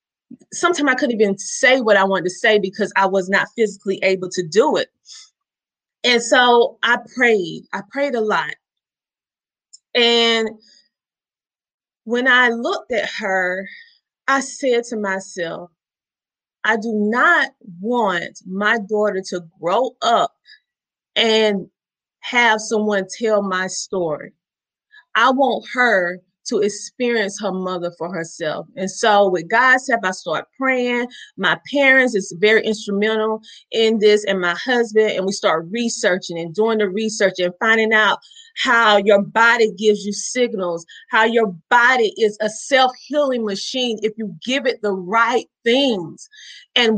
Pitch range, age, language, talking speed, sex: 195-250 Hz, 20-39, English, 140 wpm, female